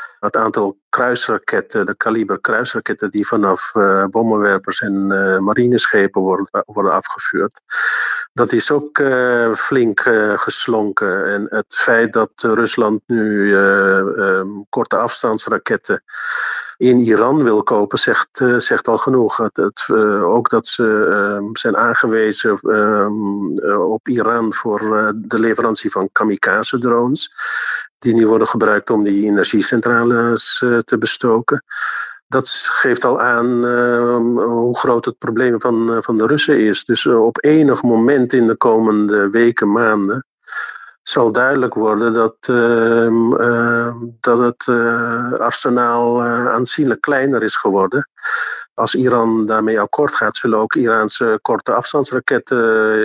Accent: Dutch